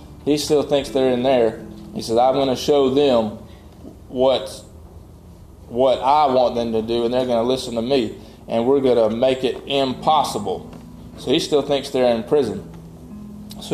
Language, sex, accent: English, male, American